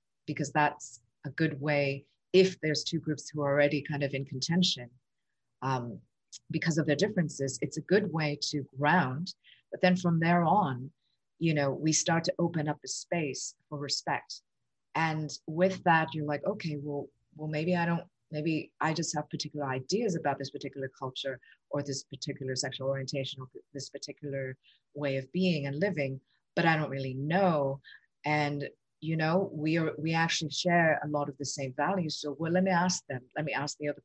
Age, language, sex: 30-49, English, female